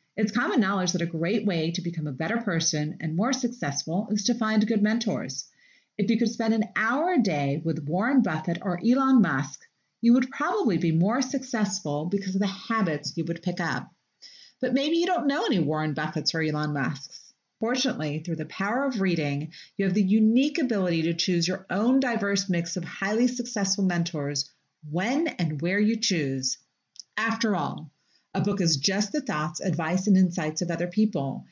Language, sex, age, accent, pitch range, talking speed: English, female, 40-59, American, 160-225 Hz, 190 wpm